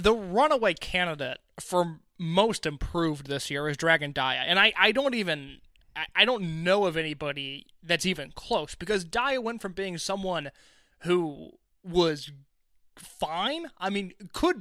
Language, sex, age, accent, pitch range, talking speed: English, male, 20-39, American, 165-210 Hz, 150 wpm